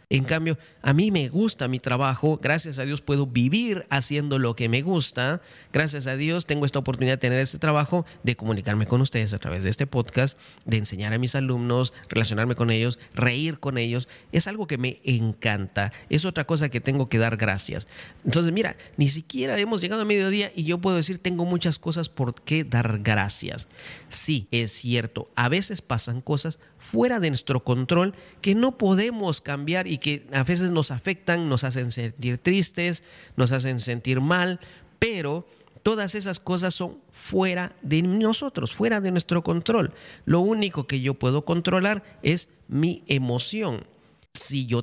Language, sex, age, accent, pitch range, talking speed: Spanish, male, 40-59, Mexican, 125-175 Hz, 175 wpm